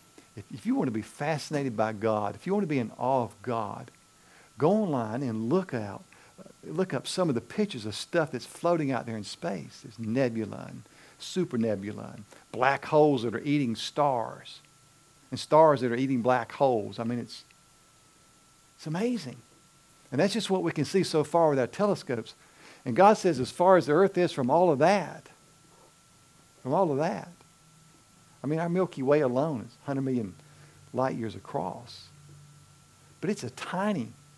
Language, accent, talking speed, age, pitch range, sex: English, American, 180 wpm, 50-69, 115-160 Hz, male